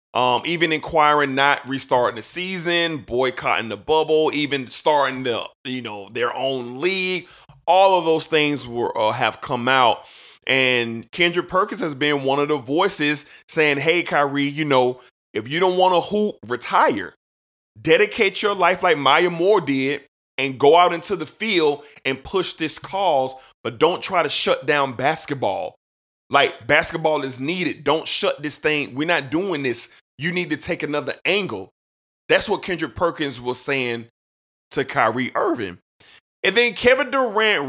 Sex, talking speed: male, 160 wpm